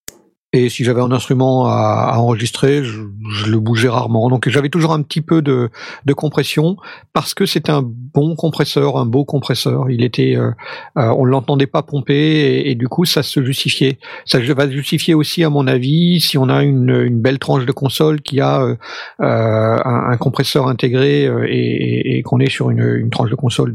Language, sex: French, male